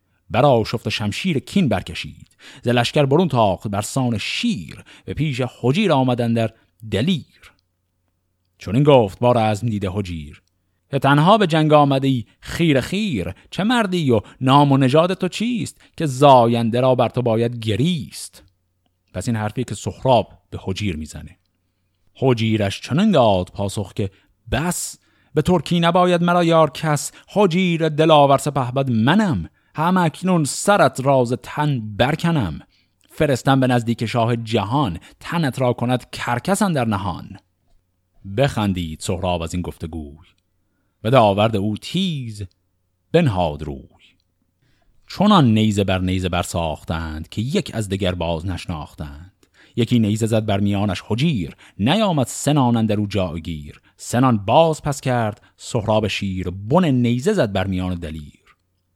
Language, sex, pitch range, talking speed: Persian, male, 95-140 Hz, 135 wpm